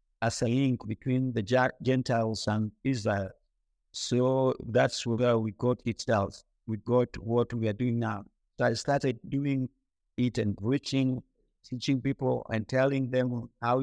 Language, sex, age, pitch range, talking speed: English, male, 50-69, 115-130 Hz, 150 wpm